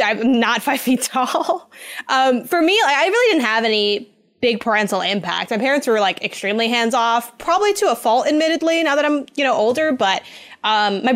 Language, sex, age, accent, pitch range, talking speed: English, female, 10-29, American, 205-255 Hz, 195 wpm